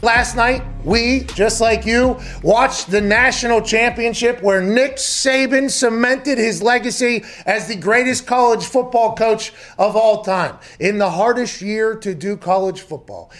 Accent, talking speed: American, 150 wpm